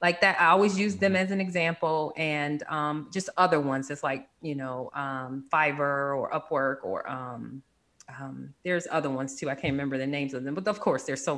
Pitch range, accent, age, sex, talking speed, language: 150-195 Hz, American, 30-49, female, 215 wpm, English